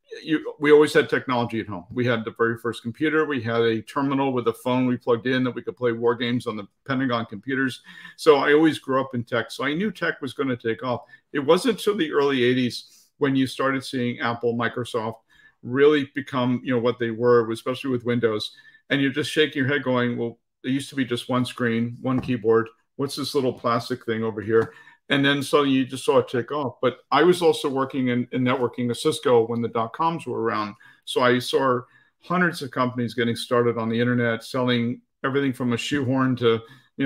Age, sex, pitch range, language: 50-69, male, 120-140 Hz, English